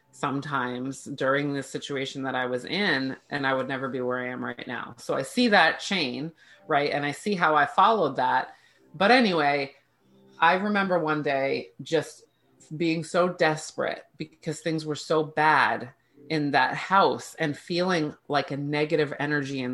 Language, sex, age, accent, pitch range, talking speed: English, female, 30-49, American, 140-170 Hz, 170 wpm